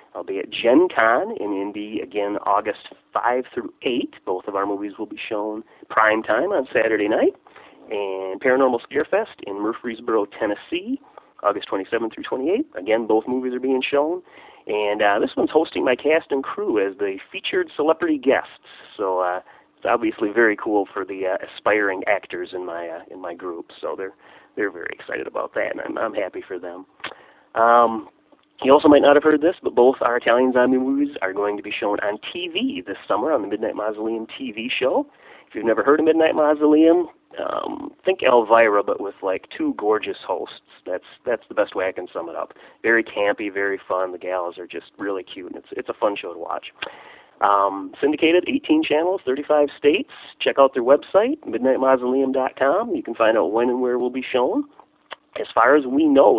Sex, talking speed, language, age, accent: male, 195 wpm, English, 30-49, American